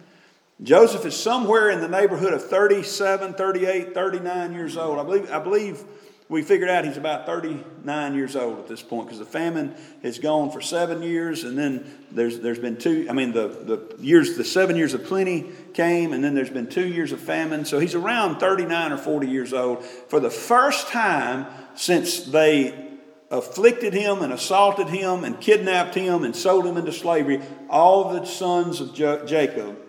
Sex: male